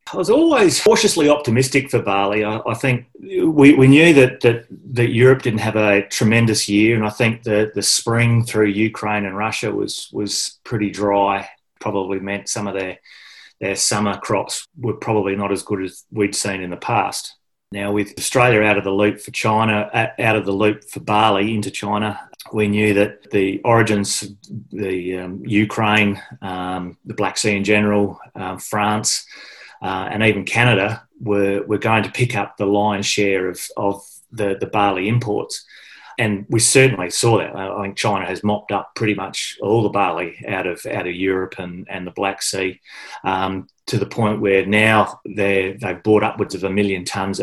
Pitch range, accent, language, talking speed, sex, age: 95-110 Hz, Australian, English, 185 wpm, male, 30-49